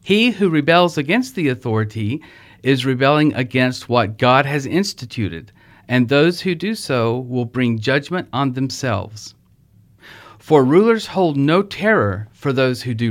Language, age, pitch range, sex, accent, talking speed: English, 40-59, 110-160 Hz, male, American, 145 wpm